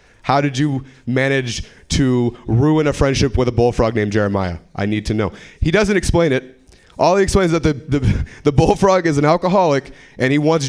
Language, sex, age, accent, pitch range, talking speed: English, male, 30-49, American, 95-140 Hz, 200 wpm